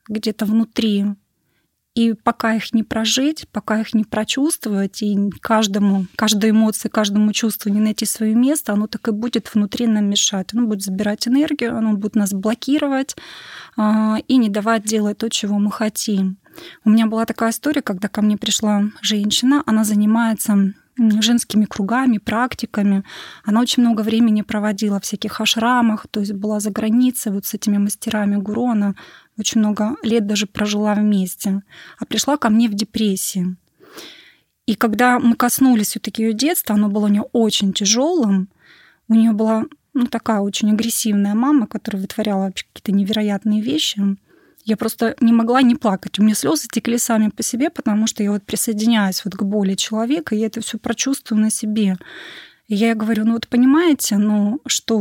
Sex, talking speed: female, 170 wpm